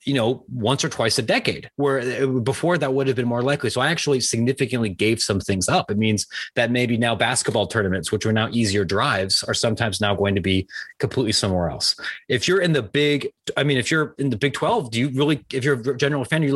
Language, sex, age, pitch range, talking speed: English, male, 30-49, 115-150 Hz, 240 wpm